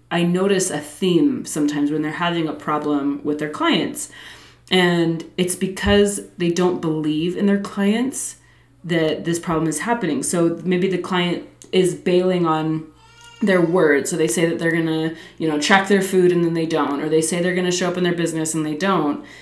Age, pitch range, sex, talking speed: 20-39, 160-190 Hz, female, 205 wpm